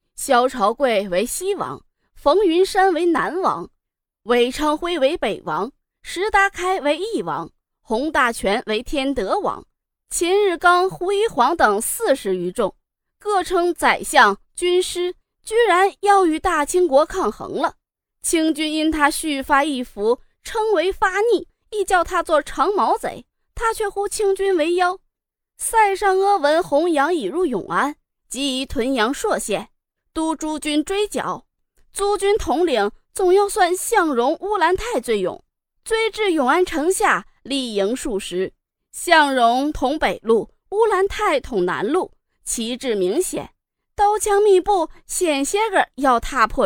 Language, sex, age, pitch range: Chinese, female, 20-39, 275-390 Hz